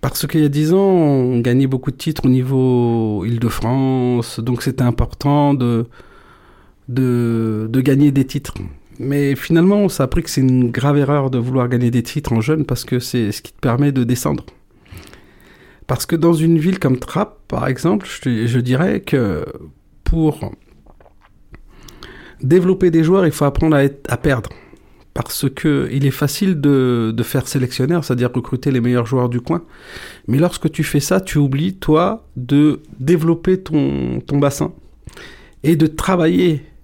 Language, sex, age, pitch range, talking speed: French, male, 40-59, 125-155 Hz, 170 wpm